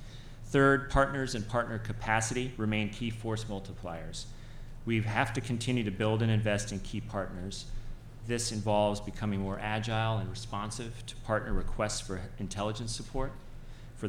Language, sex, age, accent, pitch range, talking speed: English, male, 30-49, American, 100-120 Hz, 145 wpm